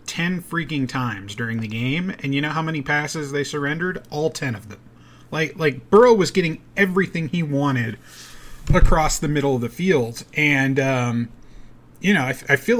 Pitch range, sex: 120-155 Hz, male